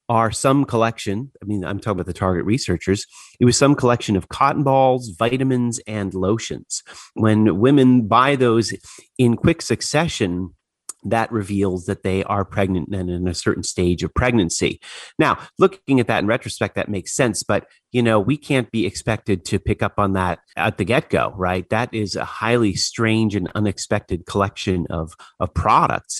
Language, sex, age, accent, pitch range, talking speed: English, male, 30-49, American, 95-120 Hz, 175 wpm